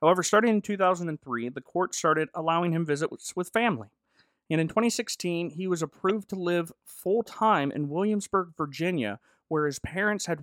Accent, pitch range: American, 145-190 Hz